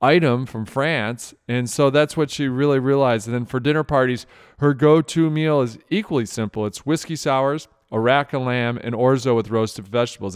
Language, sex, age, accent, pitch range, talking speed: English, male, 40-59, American, 120-155 Hz, 190 wpm